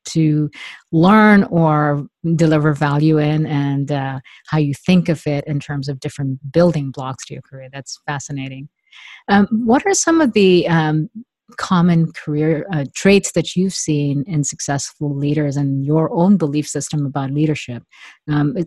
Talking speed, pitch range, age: 160 wpm, 145-175 Hz, 50-69